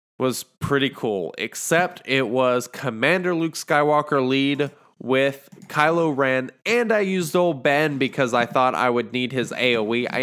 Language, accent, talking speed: English, American, 160 wpm